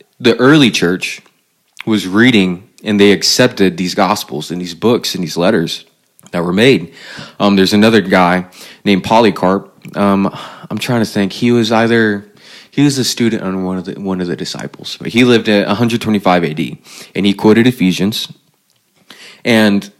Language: English